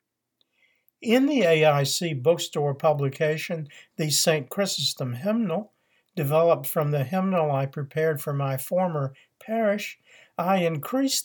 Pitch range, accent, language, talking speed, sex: 150-190 Hz, American, English, 110 wpm, male